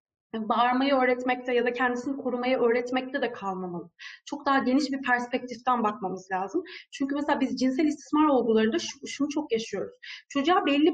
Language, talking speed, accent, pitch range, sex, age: Turkish, 150 wpm, native, 235-295 Hz, female, 30-49